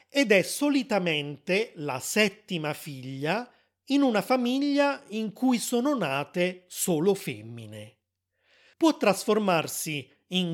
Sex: male